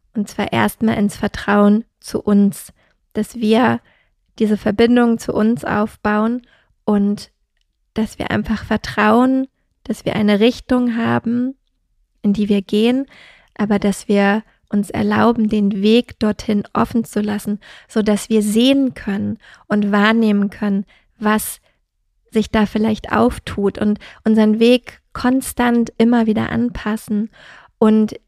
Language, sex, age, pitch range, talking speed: German, female, 20-39, 210-230 Hz, 125 wpm